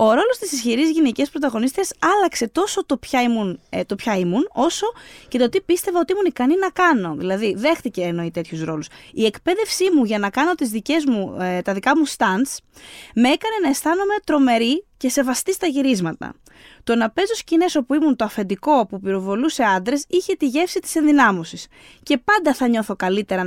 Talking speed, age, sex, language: 170 wpm, 20-39, female, Greek